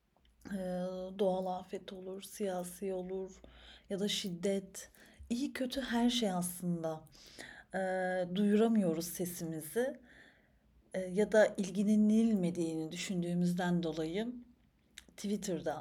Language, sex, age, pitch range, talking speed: Turkish, female, 40-59, 175-210 Hz, 95 wpm